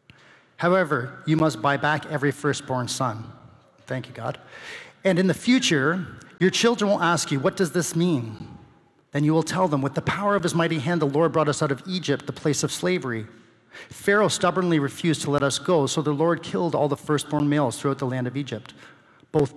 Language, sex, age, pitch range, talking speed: English, male, 40-59, 125-155 Hz, 210 wpm